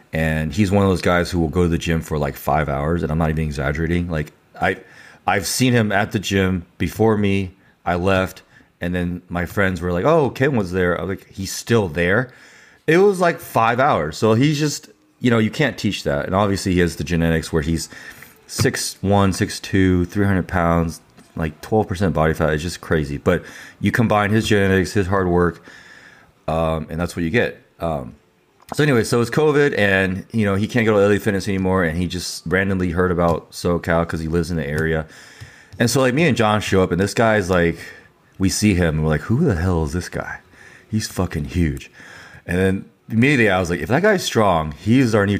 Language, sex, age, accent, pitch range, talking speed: English, male, 30-49, American, 80-105 Hz, 220 wpm